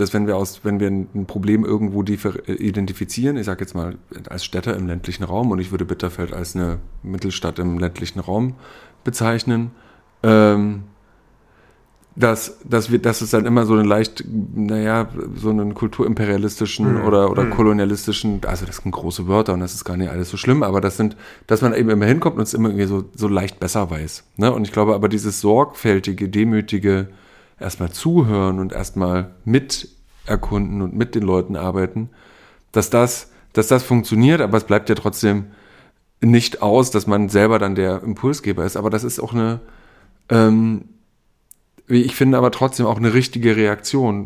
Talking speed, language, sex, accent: 170 wpm, German, male, German